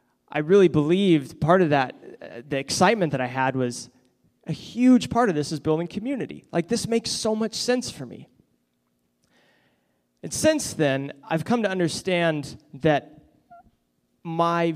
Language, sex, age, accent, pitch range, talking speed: English, male, 20-39, American, 140-180 Hz, 155 wpm